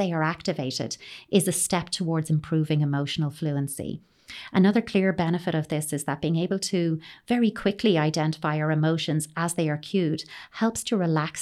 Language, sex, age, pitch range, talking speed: English, female, 30-49, 150-175 Hz, 170 wpm